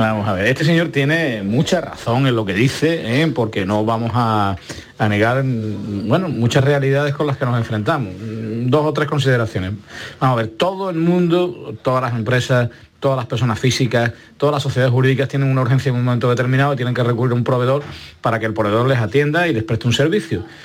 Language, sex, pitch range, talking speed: Spanish, male, 110-140 Hz, 210 wpm